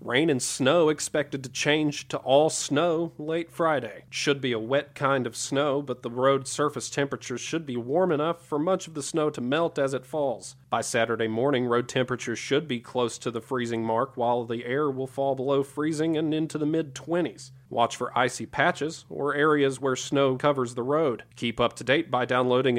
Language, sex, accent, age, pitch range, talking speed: English, male, American, 40-59, 130-160 Hz, 205 wpm